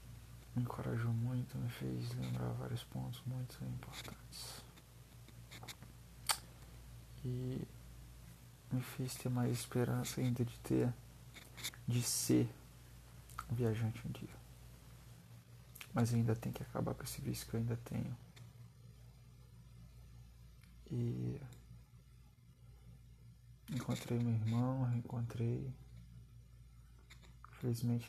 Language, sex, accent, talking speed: Portuguese, male, Brazilian, 90 wpm